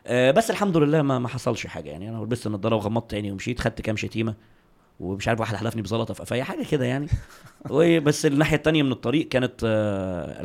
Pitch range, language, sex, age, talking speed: 105-135 Hz, Arabic, male, 20-39, 195 wpm